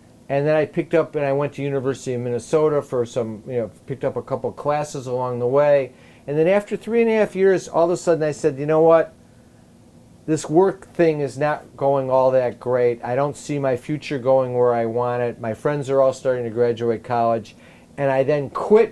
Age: 50-69